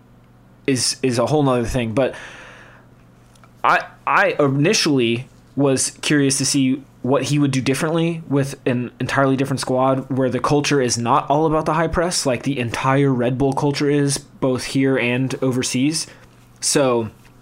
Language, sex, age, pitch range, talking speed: English, male, 20-39, 120-140 Hz, 160 wpm